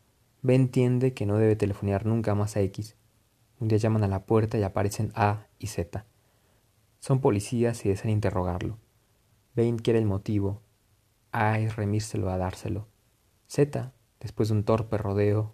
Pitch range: 100-115 Hz